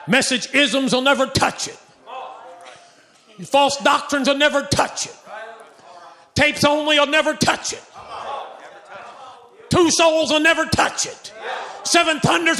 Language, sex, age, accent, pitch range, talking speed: English, male, 40-59, American, 255-325 Hz, 125 wpm